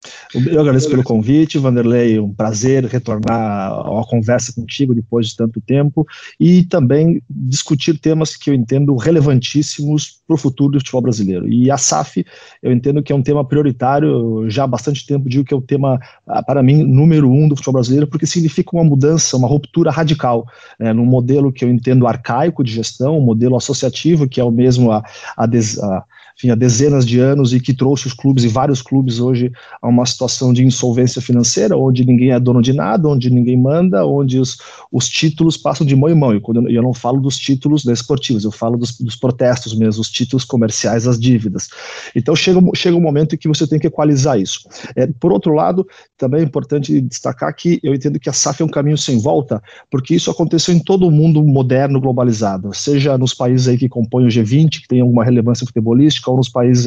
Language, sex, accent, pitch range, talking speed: Portuguese, male, Brazilian, 120-145 Hz, 205 wpm